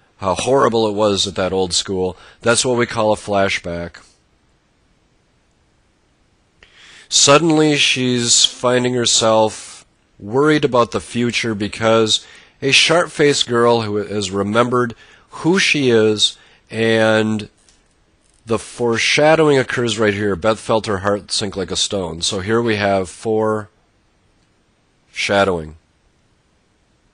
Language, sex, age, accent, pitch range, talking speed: English, male, 40-59, American, 100-120 Hz, 115 wpm